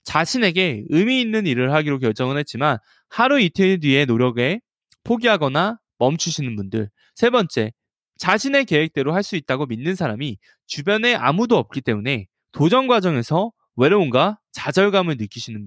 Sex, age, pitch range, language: male, 20-39, 125-200 Hz, Korean